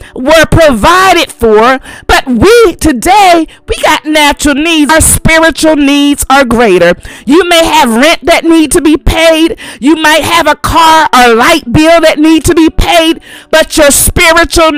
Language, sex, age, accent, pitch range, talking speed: English, female, 40-59, American, 235-320 Hz, 160 wpm